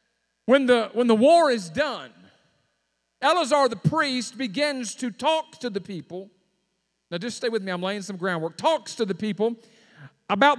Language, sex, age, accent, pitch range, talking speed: English, male, 50-69, American, 200-275 Hz, 165 wpm